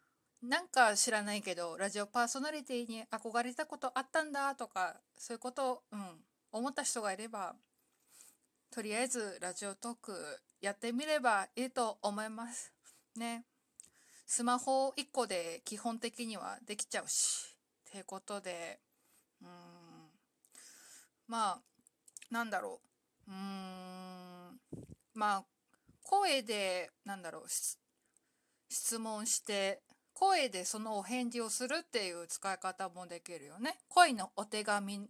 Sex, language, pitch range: female, Japanese, 185-250 Hz